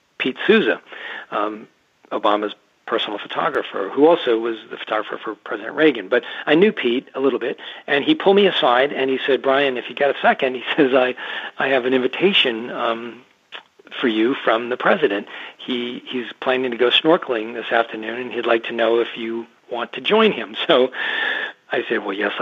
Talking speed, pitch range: 200 wpm, 115-145 Hz